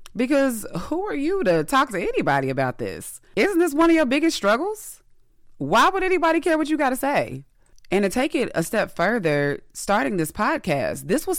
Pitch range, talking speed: 155-260 Hz, 200 wpm